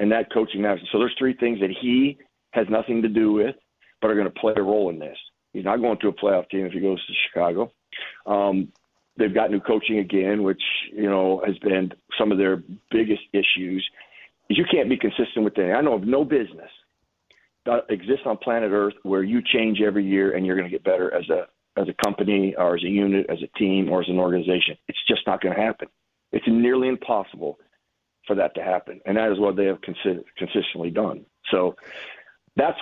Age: 50-69